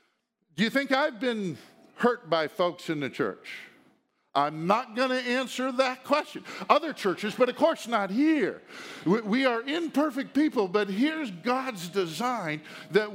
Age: 50-69